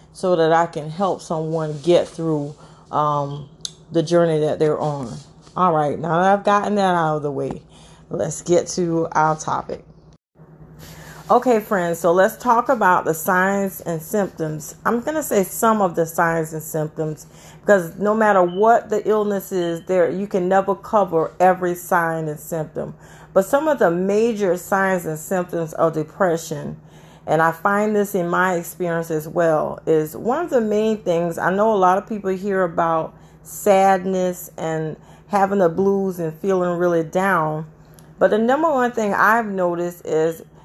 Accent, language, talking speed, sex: American, English, 170 wpm, female